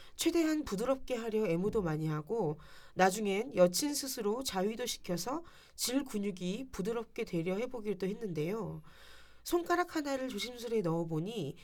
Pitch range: 175-255 Hz